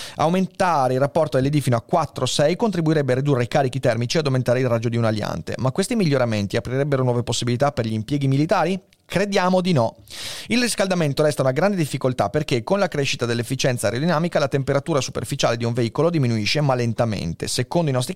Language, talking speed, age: Italian, 190 wpm, 30-49